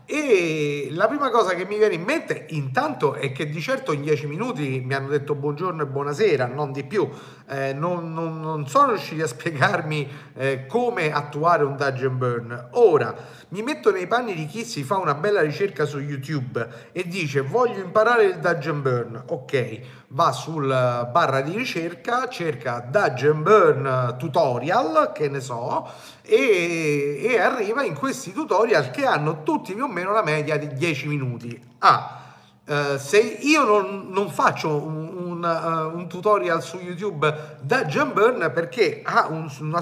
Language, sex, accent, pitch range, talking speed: Italian, male, native, 140-185 Hz, 170 wpm